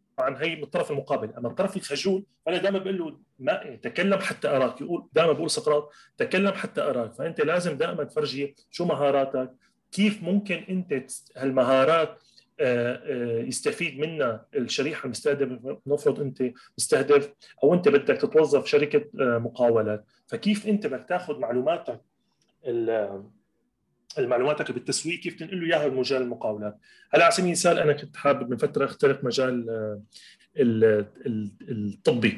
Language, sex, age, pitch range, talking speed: Arabic, male, 30-49, 130-190 Hz, 130 wpm